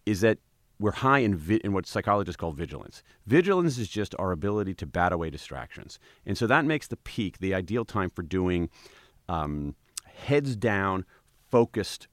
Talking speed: 170 wpm